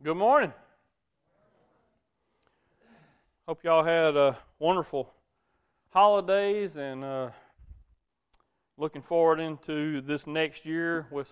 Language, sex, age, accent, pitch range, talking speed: English, male, 40-59, American, 140-160 Hz, 95 wpm